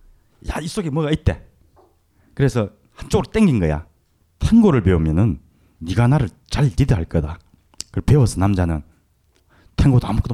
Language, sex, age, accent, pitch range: Korean, male, 30-49, native, 85-125 Hz